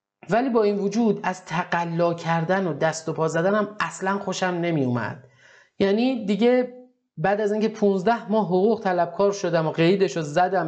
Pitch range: 145-190 Hz